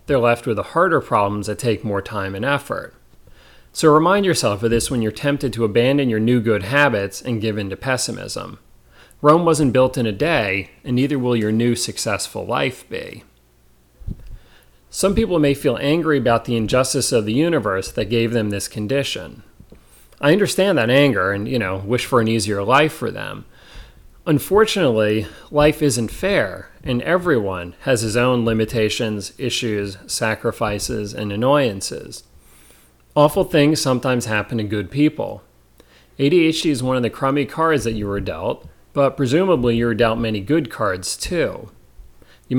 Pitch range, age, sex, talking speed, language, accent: 105-140 Hz, 40-59, male, 165 wpm, English, American